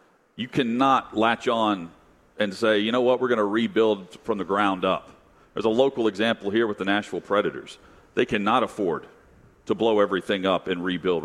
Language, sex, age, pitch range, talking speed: English, male, 40-59, 110-135 Hz, 185 wpm